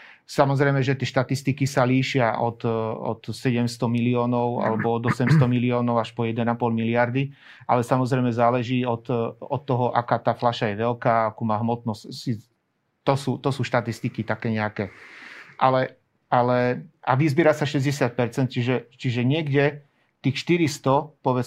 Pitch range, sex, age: 120-140 Hz, male, 40-59